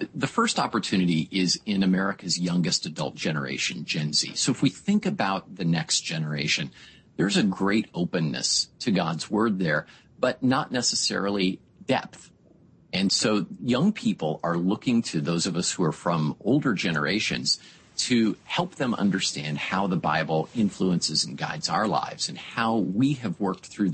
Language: English